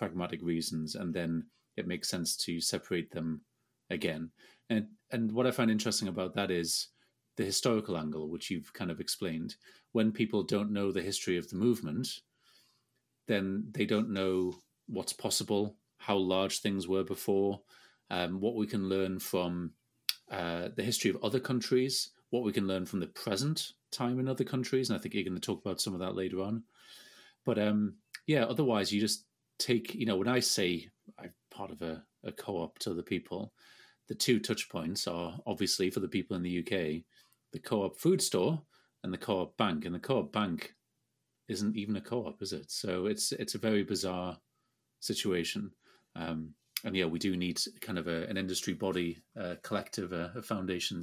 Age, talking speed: 30-49, 185 wpm